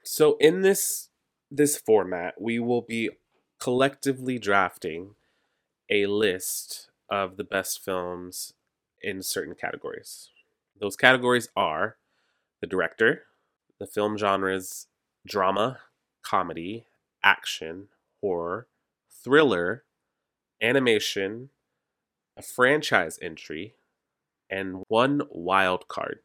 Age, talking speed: 30-49, 90 wpm